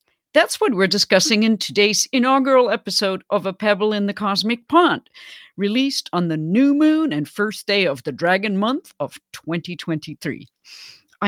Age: 50-69